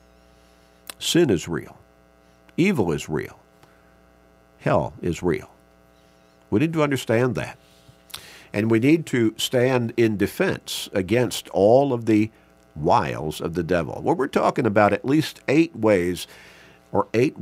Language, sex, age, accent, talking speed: English, male, 50-69, American, 135 wpm